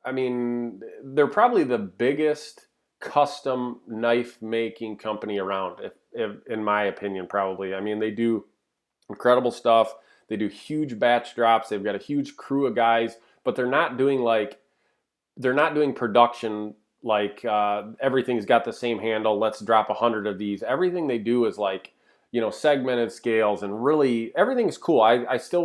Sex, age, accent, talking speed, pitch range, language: male, 30-49, American, 170 wpm, 110-130 Hz, English